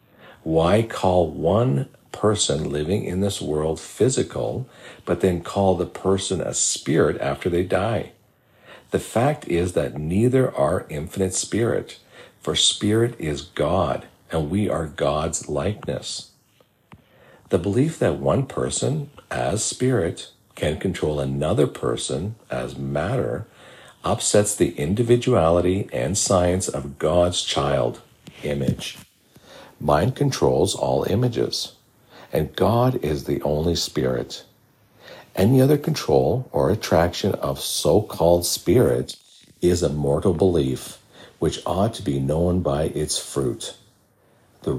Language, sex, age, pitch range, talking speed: English, male, 50-69, 75-110 Hz, 120 wpm